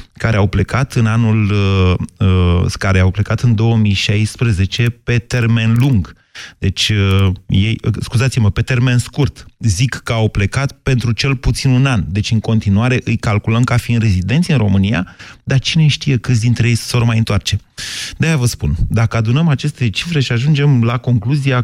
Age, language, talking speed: 30-49, Romanian, 165 wpm